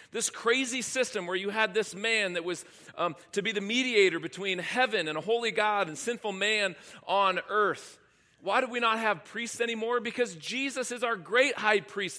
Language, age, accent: English, 40-59, American